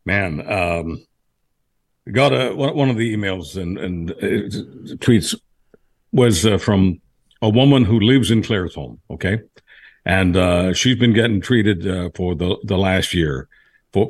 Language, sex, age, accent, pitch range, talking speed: English, male, 60-79, American, 105-155 Hz, 145 wpm